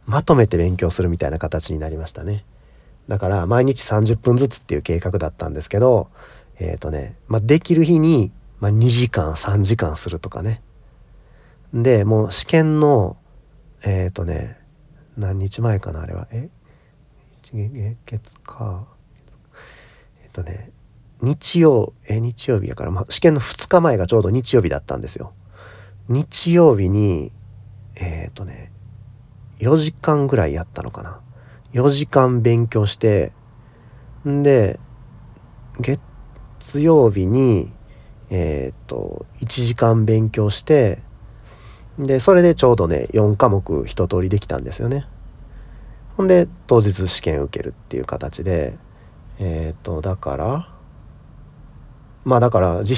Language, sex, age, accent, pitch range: Japanese, male, 40-59, native, 95-130 Hz